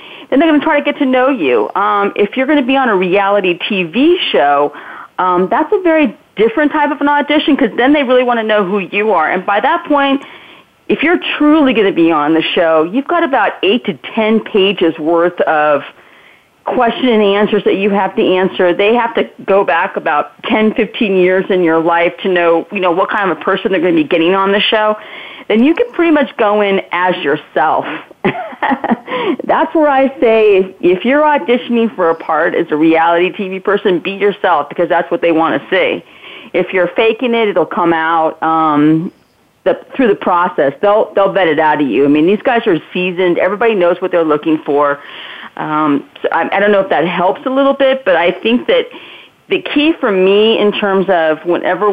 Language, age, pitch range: English, 40-59, 175-255 Hz